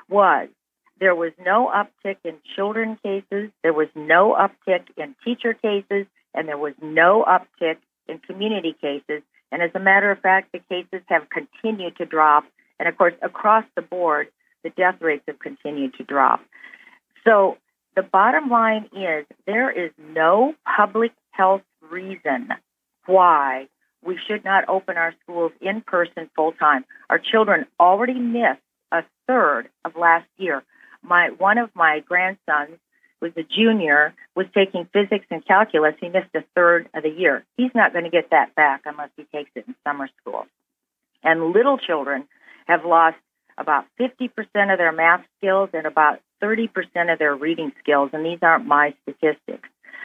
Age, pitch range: 50-69, 160-205 Hz